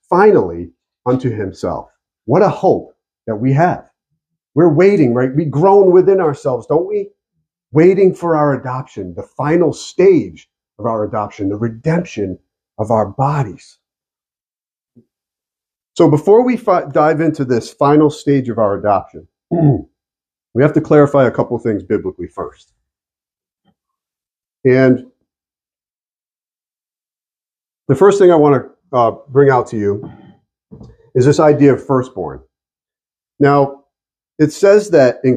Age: 40-59